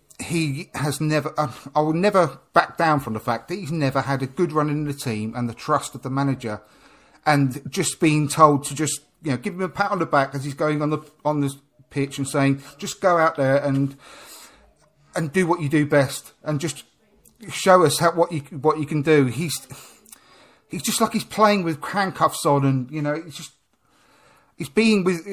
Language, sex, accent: English, male, British